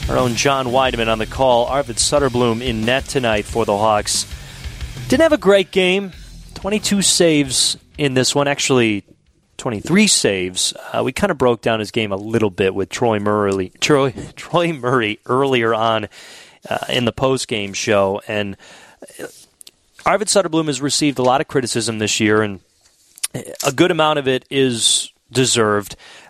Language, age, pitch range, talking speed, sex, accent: English, 30-49, 110-145 Hz, 160 wpm, male, American